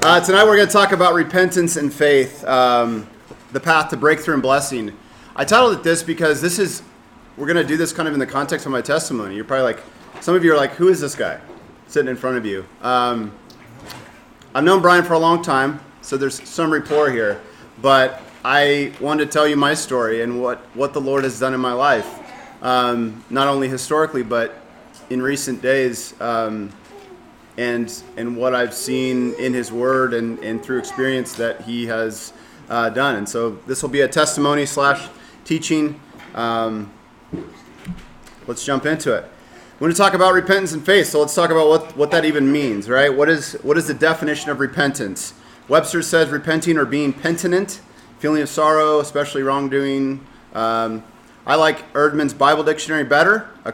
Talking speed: 190 wpm